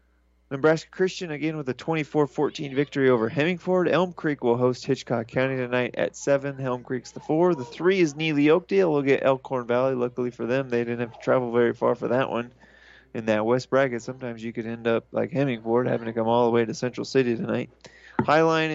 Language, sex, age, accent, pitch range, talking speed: English, male, 30-49, American, 120-145 Hz, 210 wpm